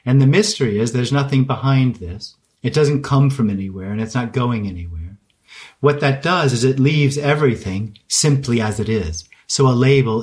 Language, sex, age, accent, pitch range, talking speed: English, male, 40-59, American, 115-140 Hz, 190 wpm